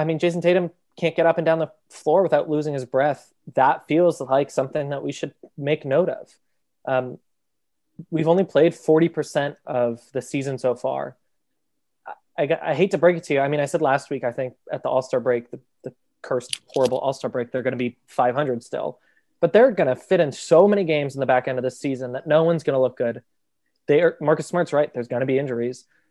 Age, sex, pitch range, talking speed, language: 20-39, male, 130-160 Hz, 230 wpm, English